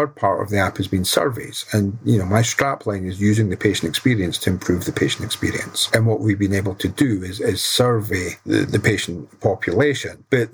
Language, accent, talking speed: English, British, 210 wpm